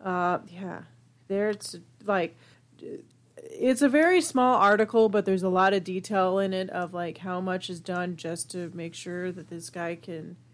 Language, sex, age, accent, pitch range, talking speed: English, female, 30-49, American, 170-215 Hz, 180 wpm